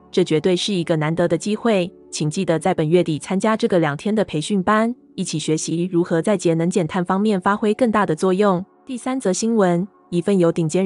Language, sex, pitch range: Chinese, female, 165-205 Hz